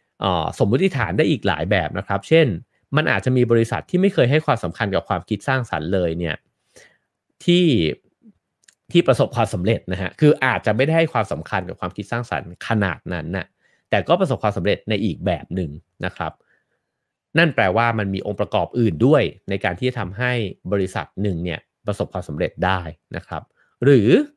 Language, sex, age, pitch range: English, male, 30-49, 100-150 Hz